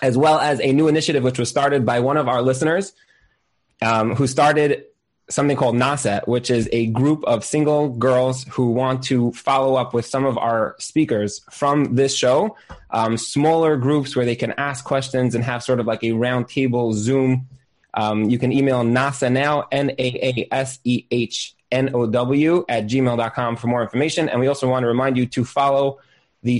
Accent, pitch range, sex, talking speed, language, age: American, 120-140 Hz, male, 180 wpm, English, 20-39